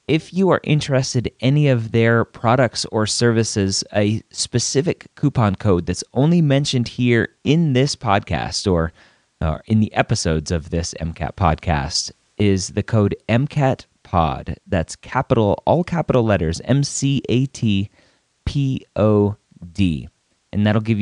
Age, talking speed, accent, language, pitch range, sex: 30-49, 125 wpm, American, English, 85-115 Hz, male